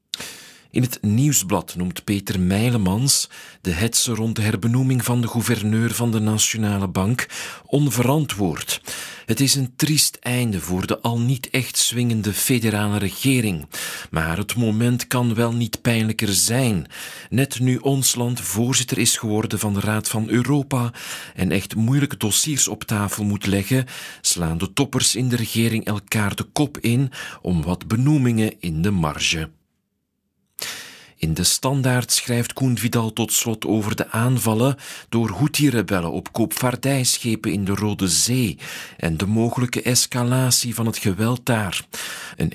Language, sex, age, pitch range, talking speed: Dutch, male, 40-59, 105-125 Hz, 145 wpm